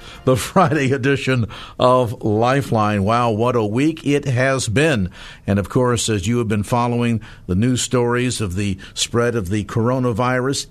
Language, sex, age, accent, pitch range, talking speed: English, male, 50-69, American, 115-145 Hz, 165 wpm